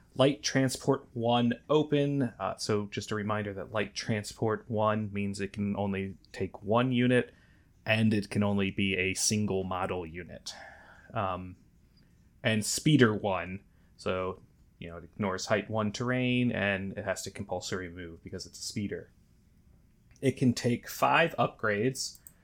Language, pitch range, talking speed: English, 95-120 Hz, 150 wpm